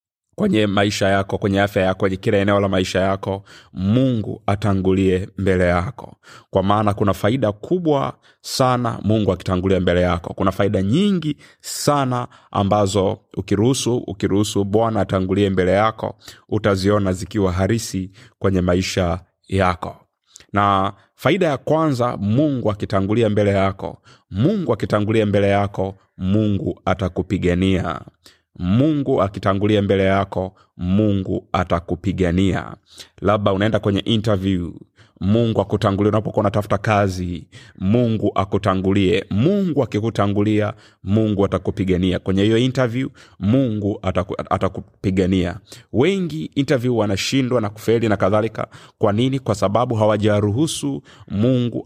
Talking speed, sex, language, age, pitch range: 110 wpm, male, Swahili, 30-49, 95-110 Hz